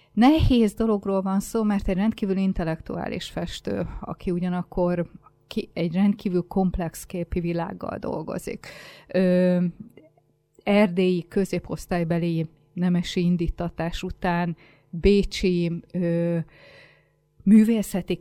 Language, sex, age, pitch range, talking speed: Hungarian, female, 30-49, 170-190 Hz, 85 wpm